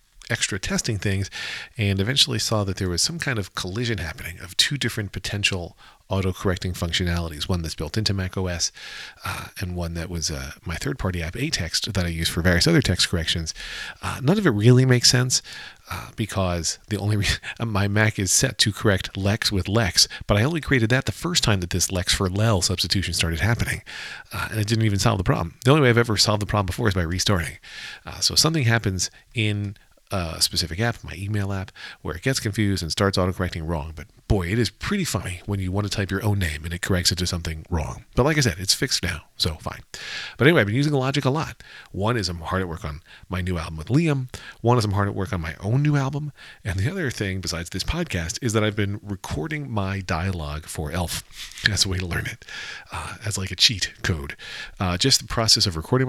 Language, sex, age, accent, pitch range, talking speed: English, male, 40-59, American, 90-115 Hz, 235 wpm